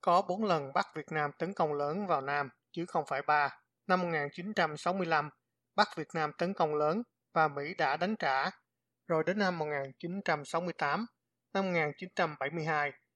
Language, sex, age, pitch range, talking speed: Vietnamese, male, 20-39, 145-180 Hz, 155 wpm